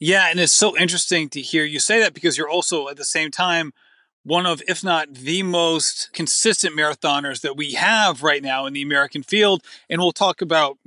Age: 30-49